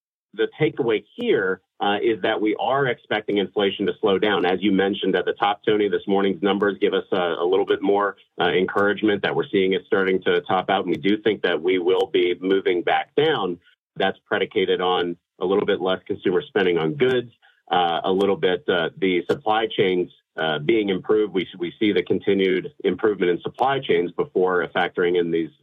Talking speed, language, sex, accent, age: 200 wpm, English, male, American, 40-59